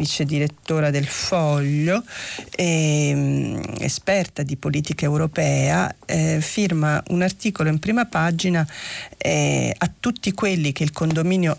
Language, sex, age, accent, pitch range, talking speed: Italian, female, 40-59, native, 145-180 Hz, 120 wpm